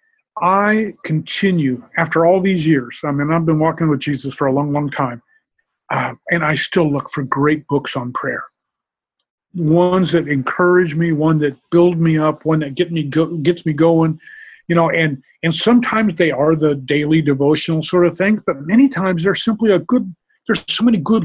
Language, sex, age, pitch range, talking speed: English, male, 40-59, 145-180 Hz, 185 wpm